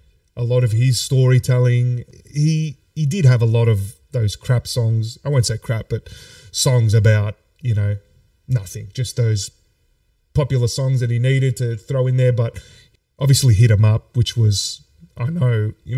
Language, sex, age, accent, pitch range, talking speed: English, male, 30-49, Australian, 105-125 Hz, 175 wpm